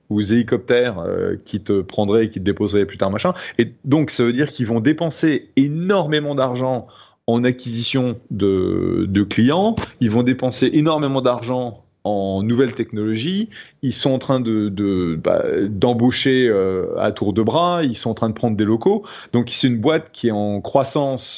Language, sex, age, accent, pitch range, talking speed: French, male, 30-49, French, 110-140 Hz, 185 wpm